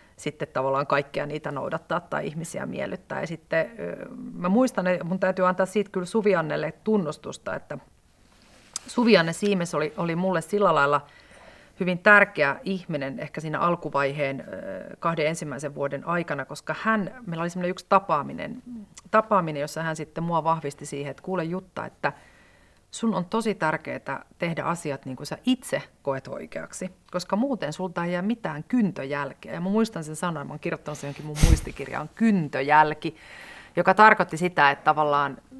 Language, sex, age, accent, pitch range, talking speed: Finnish, female, 30-49, native, 155-200 Hz, 155 wpm